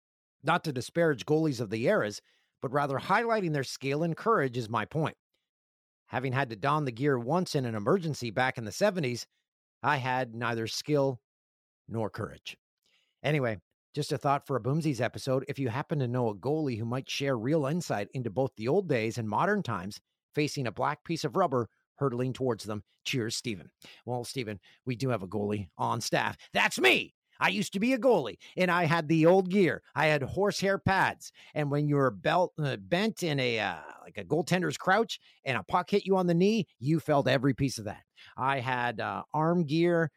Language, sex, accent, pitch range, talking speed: English, male, American, 120-165 Hz, 200 wpm